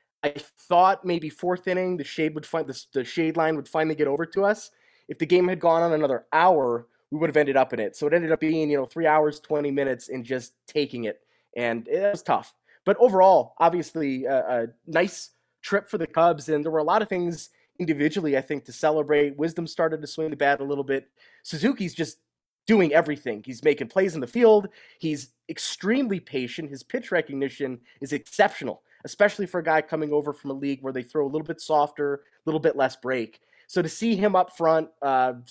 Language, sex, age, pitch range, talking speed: English, male, 20-39, 140-180 Hz, 220 wpm